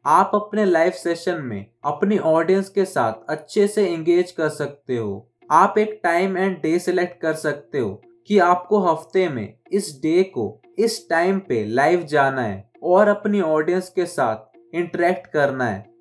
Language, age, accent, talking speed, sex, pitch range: Hindi, 20-39, native, 165 wpm, male, 145-190 Hz